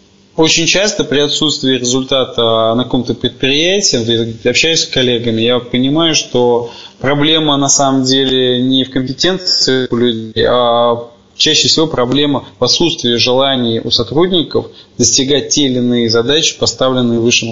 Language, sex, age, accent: Russian, male, 20-39, native